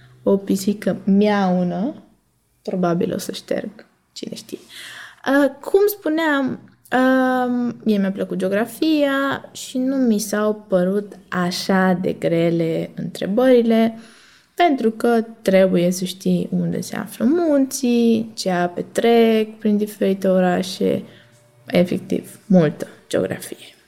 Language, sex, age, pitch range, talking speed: Romanian, female, 20-39, 180-240 Hz, 110 wpm